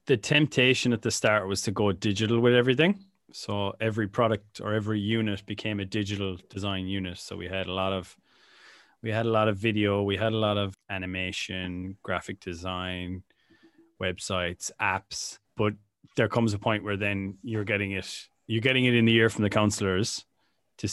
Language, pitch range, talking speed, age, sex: English, 95-110 Hz, 185 wpm, 20-39, male